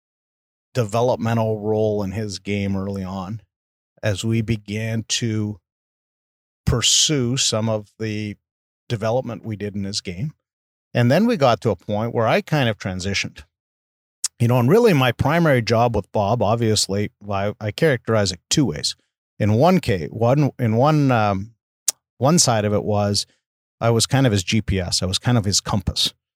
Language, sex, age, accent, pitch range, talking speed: English, male, 50-69, American, 100-120 Hz, 165 wpm